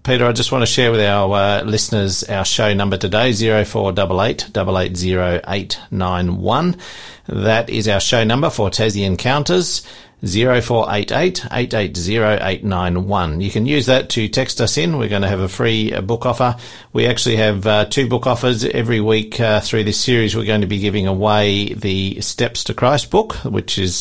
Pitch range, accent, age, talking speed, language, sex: 95-115 Hz, Australian, 50-69, 200 wpm, English, male